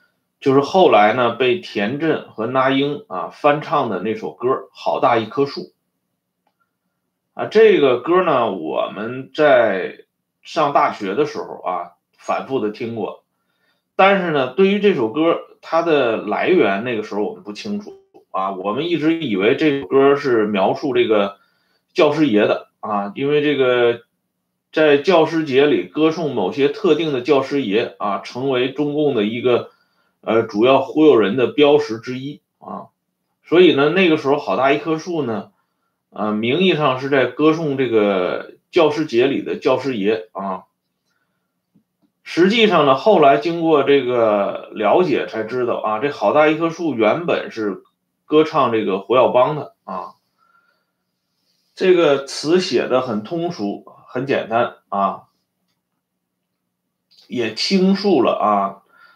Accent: Chinese